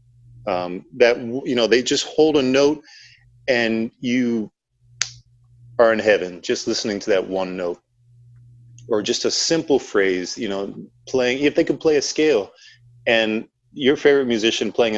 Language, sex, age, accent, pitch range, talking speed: English, male, 30-49, American, 100-125 Hz, 155 wpm